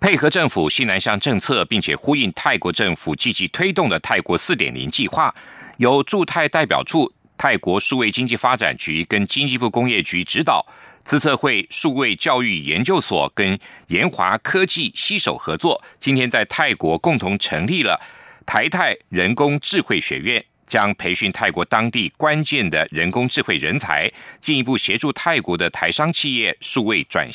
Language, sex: German, male